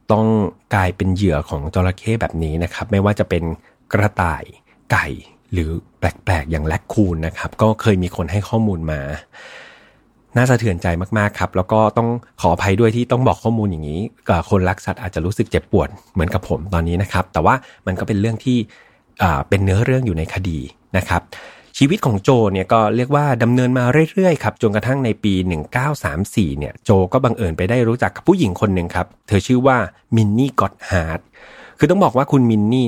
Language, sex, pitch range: Thai, male, 90-120 Hz